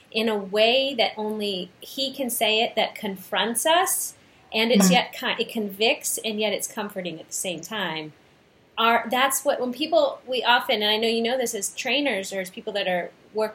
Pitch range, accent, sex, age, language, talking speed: 180-230 Hz, American, female, 30-49, English, 210 wpm